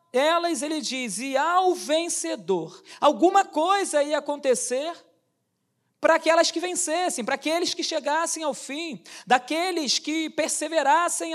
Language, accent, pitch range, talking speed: Portuguese, Brazilian, 280-345 Hz, 120 wpm